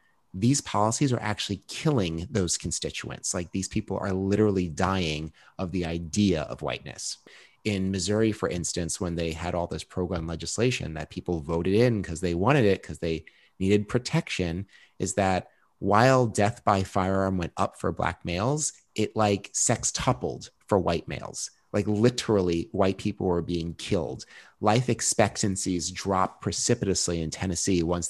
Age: 30-49